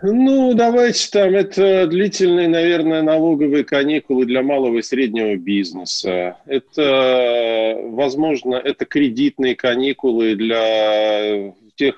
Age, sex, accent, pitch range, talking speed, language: 40-59, male, native, 120-190 Hz, 100 wpm, Russian